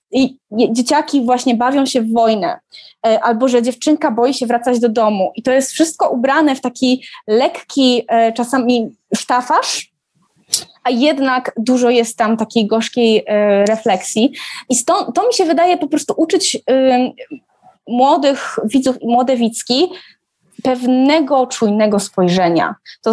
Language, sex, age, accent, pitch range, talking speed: Polish, female, 20-39, native, 220-260 Hz, 130 wpm